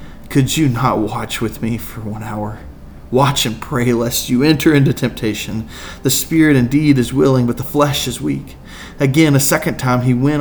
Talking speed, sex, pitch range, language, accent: 190 wpm, male, 110-135 Hz, English, American